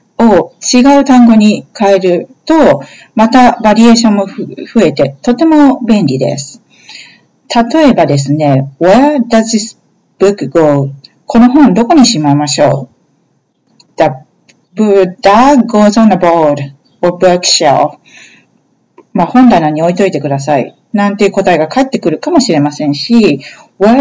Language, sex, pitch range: Japanese, female, 165-245 Hz